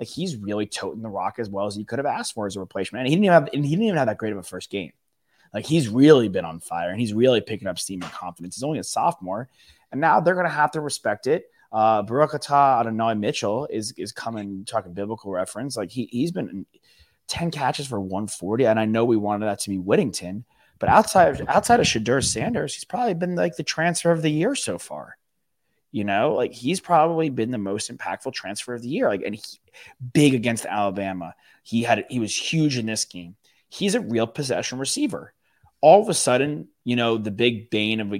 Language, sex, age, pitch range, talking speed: English, male, 30-49, 100-135 Hz, 230 wpm